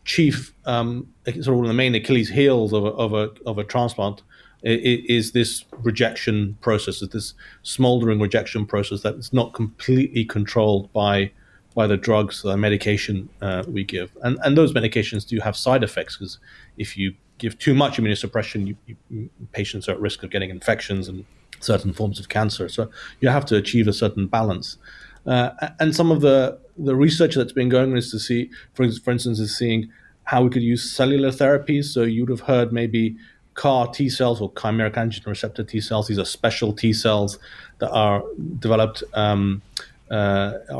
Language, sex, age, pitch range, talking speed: English, male, 30-49, 105-130 Hz, 180 wpm